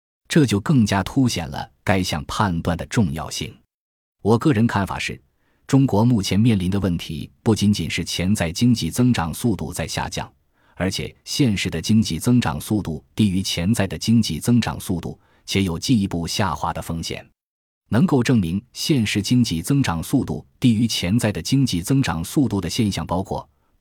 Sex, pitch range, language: male, 85-115 Hz, Chinese